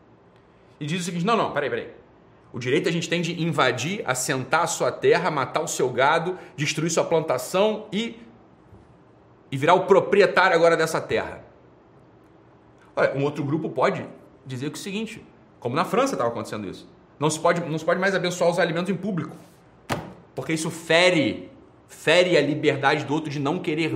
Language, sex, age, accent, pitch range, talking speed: Portuguese, male, 30-49, Brazilian, 145-195 Hz, 185 wpm